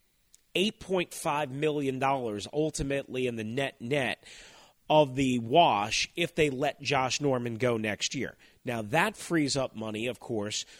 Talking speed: 130 wpm